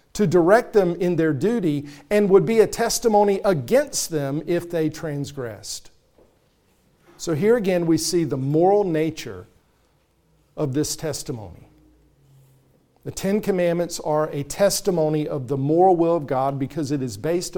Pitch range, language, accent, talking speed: 140-175 Hz, English, American, 145 wpm